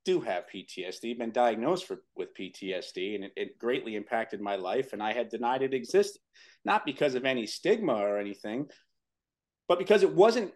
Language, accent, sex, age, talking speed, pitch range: English, American, male, 40-59, 180 wpm, 115-175 Hz